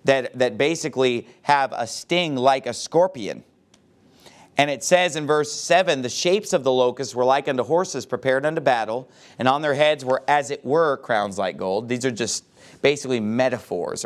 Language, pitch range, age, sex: English, 115-145 Hz, 30-49, male